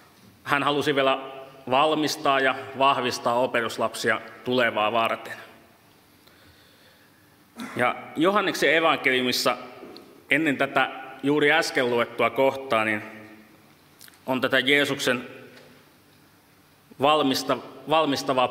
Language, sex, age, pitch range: Finnish, male, 30-49, 120-140 Hz